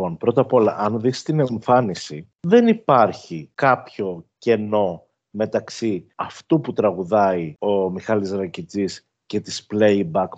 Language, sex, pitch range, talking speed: Greek, male, 105-150 Hz, 120 wpm